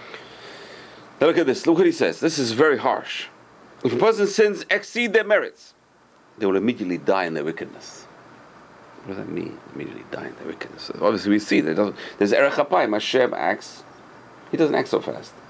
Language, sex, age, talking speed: English, male, 40-59, 200 wpm